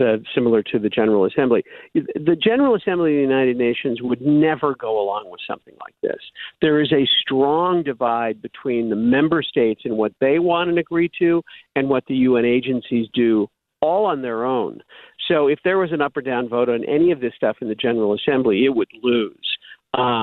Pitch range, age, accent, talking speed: 120-165 Hz, 50-69, American, 200 wpm